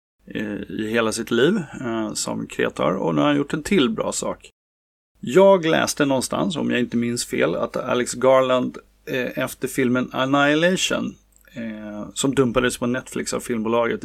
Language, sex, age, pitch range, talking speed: Swedish, male, 30-49, 115-145 Hz, 160 wpm